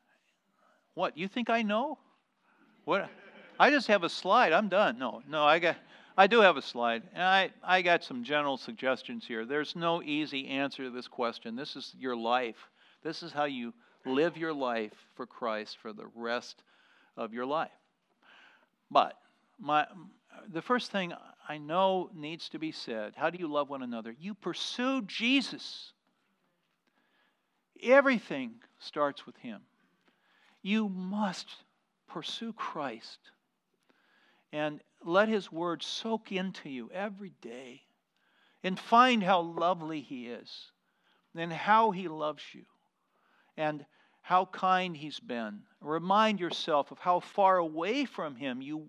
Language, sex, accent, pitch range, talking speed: English, male, American, 145-210 Hz, 145 wpm